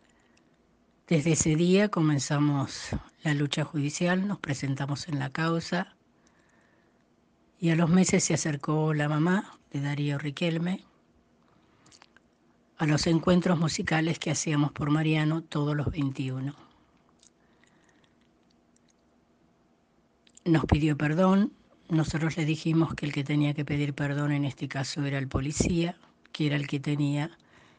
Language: Spanish